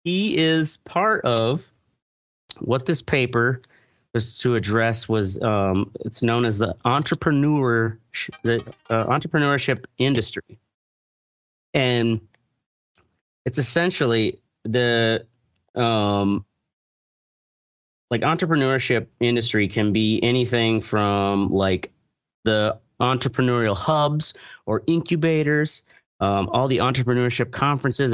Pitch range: 105-130 Hz